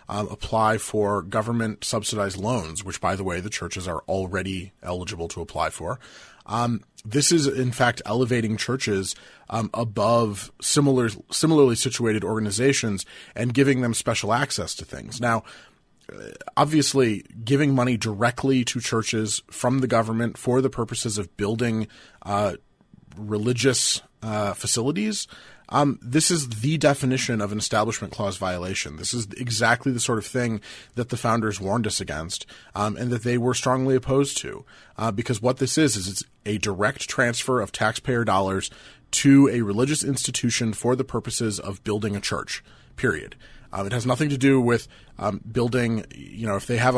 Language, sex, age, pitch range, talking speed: English, male, 30-49, 105-125 Hz, 160 wpm